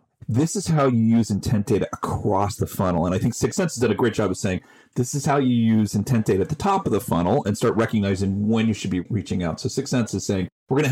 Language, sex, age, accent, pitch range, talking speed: English, male, 40-59, American, 105-140 Hz, 285 wpm